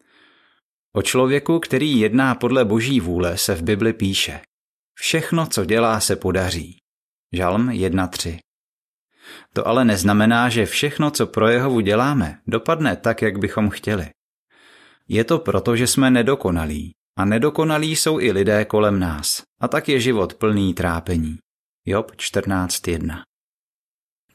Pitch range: 95-125 Hz